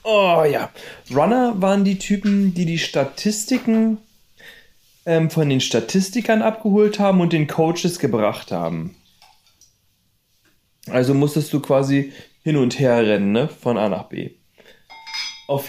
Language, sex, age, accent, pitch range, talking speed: German, male, 30-49, German, 120-180 Hz, 130 wpm